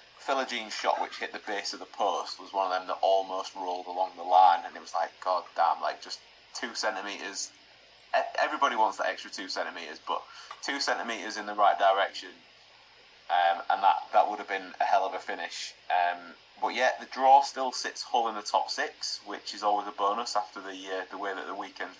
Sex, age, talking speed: male, 30-49, 215 wpm